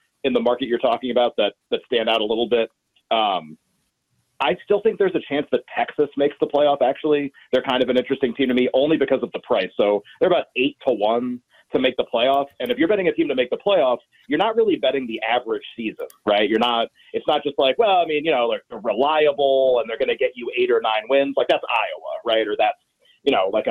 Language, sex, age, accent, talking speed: English, male, 30-49, American, 250 wpm